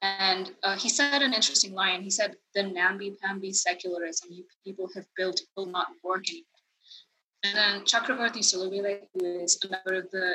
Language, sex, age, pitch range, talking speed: English, female, 20-39, 185-225 Hz, 175 wpm